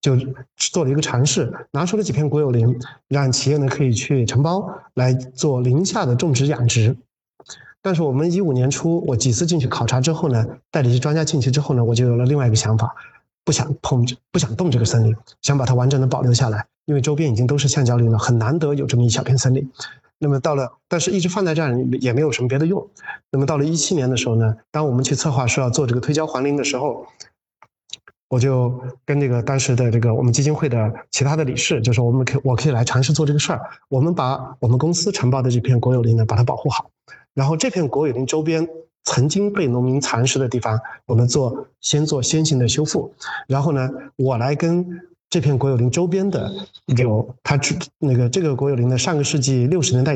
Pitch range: 125-155 Hz